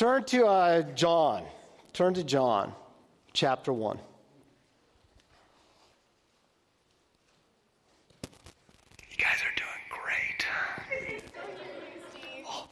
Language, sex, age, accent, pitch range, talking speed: English, male, 50-69, American, 180-250 Hz, 70 wpm